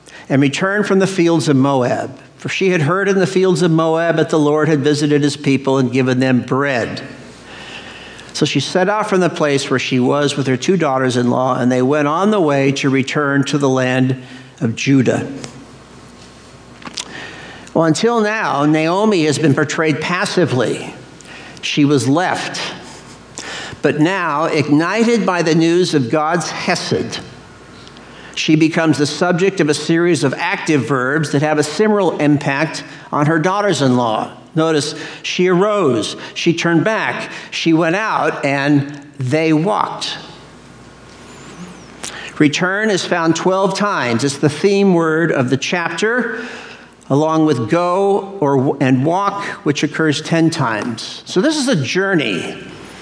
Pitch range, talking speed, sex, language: 140-180 Hz, 150 wpm, male, English